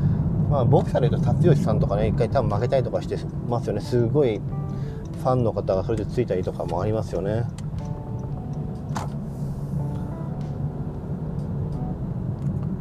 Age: 40-59